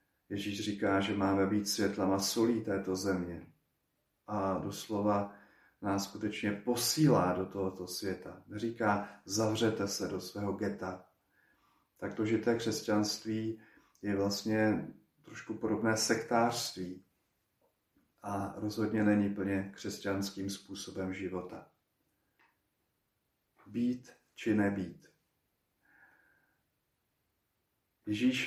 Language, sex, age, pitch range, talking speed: Slovak, male, 40-59, 100-115 Hz, 95 wpm